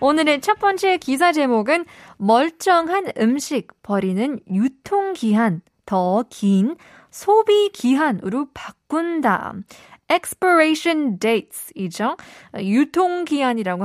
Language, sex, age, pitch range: Korean, female, 20-39, 210-320 Hz